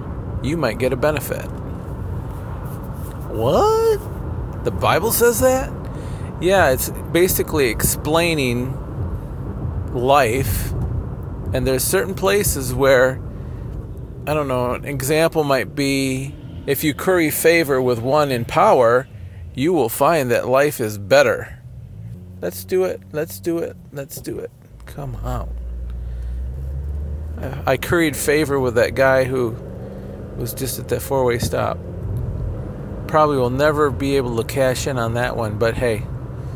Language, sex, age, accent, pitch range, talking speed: English, male, 40-59, American, 115-150 Hz, 130 wpm